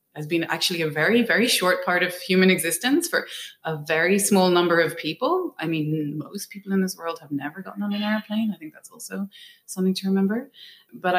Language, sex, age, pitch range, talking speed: English, female, 20-39, 155-185 Hz, 210 wpm